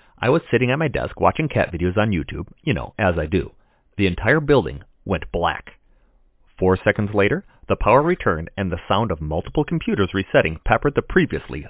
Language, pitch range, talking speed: English, 85-130 Hz, 190 wpm